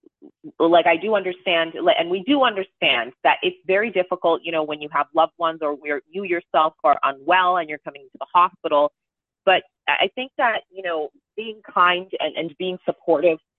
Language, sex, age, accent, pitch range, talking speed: English, female, 30-49, American, 155-205 Hz, 190 wpm